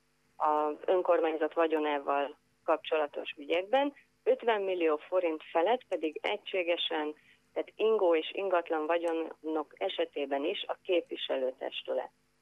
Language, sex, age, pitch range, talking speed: Hungarian, female, 30-49, 155-190 Hz, 95 wpm